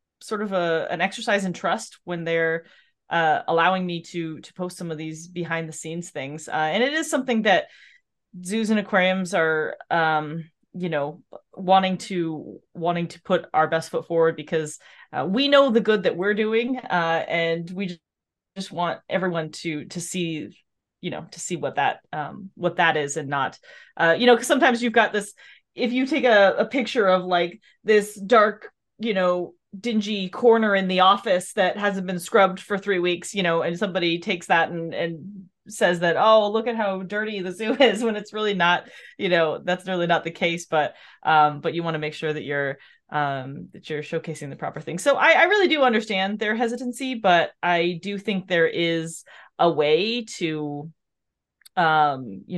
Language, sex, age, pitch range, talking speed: English, female, 20-39, 165-210 Hz, 195 wpm